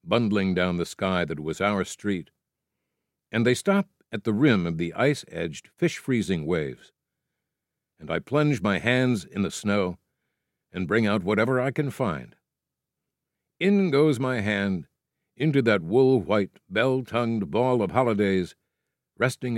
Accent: American